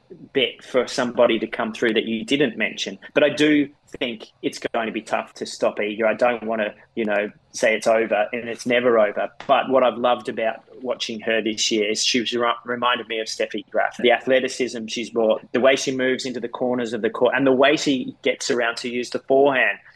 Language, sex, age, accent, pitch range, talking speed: English, male, 20-39, Australian, 115-135 Hz, 230 wpm